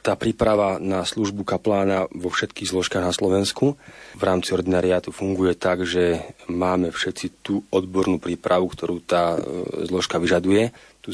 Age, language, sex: 40-59, Slovak, male